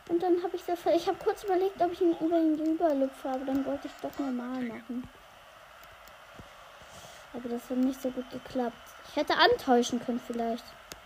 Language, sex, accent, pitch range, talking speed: German, female, German, 250-335 Hz, 190 wpm